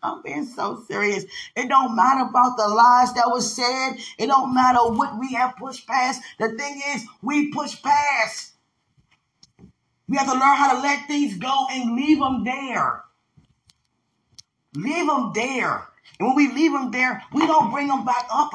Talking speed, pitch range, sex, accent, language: 180 wpm, 230-275 Hz, female, American, English